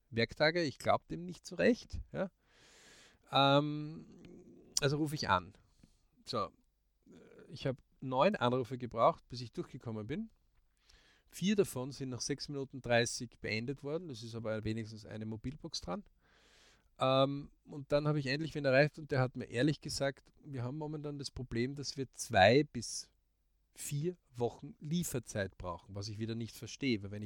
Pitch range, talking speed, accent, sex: 110-145 Hz, 160 wpm, German, male